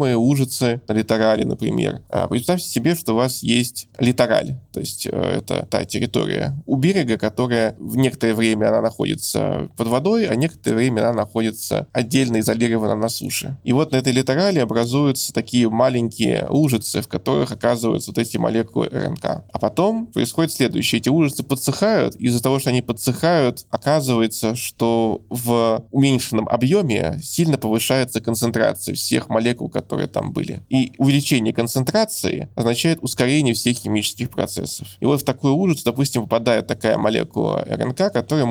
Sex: male